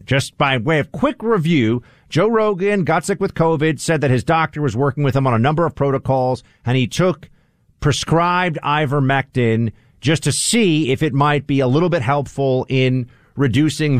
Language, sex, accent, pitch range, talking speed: English, male, American, 120-165 Hz, 185 wpm